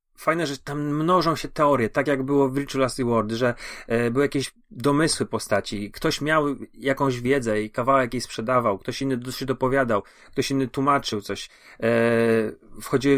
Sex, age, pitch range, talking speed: male, 30-49, 115-135 Hz, 155 wpm